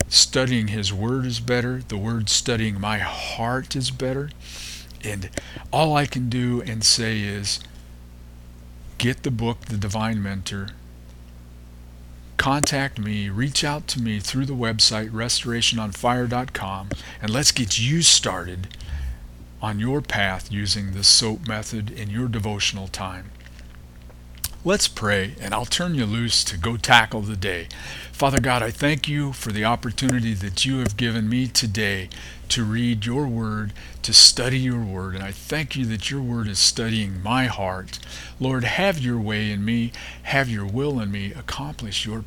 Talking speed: 155 wpm